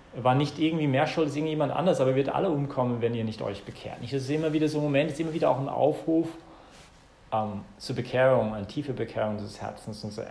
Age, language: 40-59, English